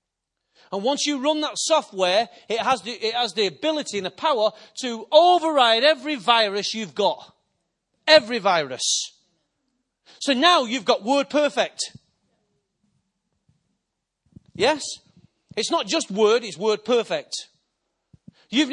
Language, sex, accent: English, male, British